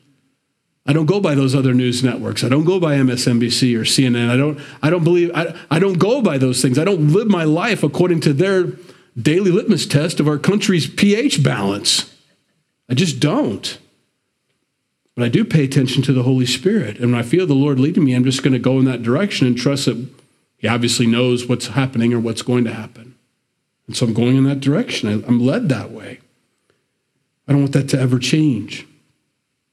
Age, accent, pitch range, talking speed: 40-59, American, 120-150 Hz, 210 wpm